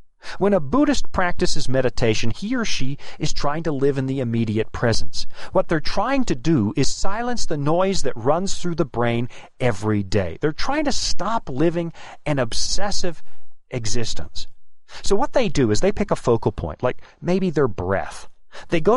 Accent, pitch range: American, 115-175 Hz